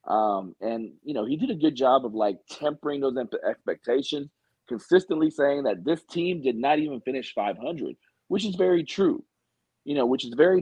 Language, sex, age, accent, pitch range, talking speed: English, male, 40-59, American, 125-170 Hz, 190 wpm